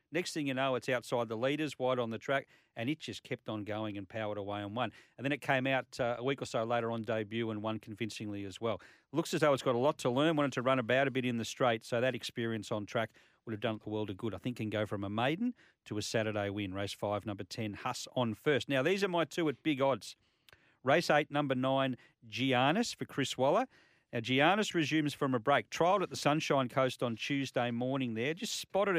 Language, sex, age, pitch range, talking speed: English, male, 40-59, 115-150 Hz, 255 wpm